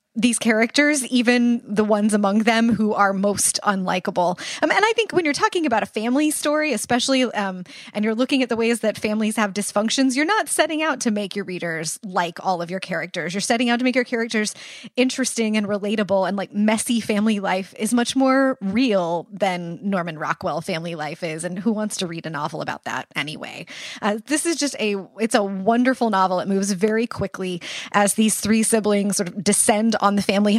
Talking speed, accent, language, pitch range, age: 210 wpm, American, English, 195-240 Hz, 20-39